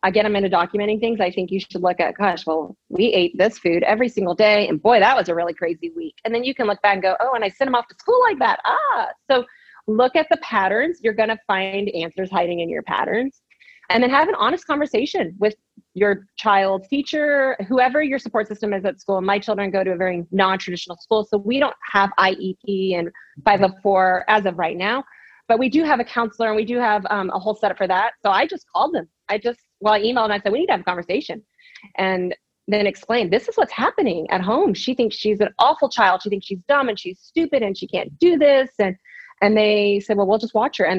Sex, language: female, English